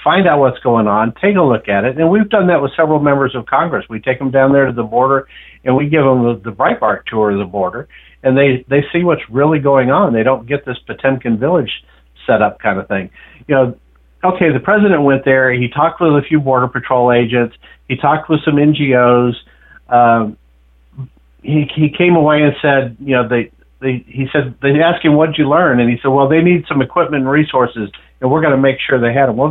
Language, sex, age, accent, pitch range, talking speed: English, male, 50-69, American, 120-155 Hz, 240 wpm